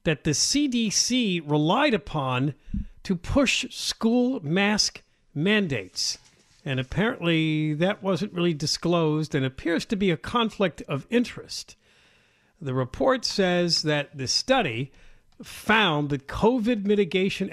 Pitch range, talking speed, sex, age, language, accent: 135-195 Hz, 115 wpm, male, 50-69, English, American